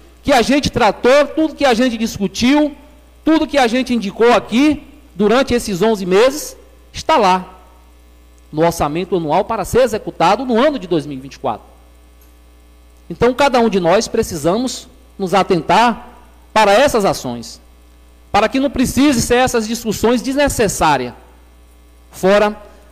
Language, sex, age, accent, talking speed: Portuguese, male, 40-59, Brazilian, 135 wpm